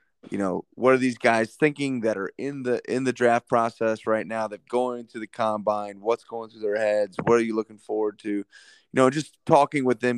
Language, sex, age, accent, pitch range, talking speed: English, male, 30-49, American, 105-125 Hz, 230 wpm